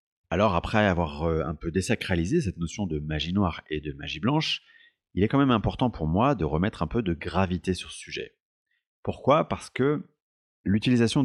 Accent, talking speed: French, 185 wpm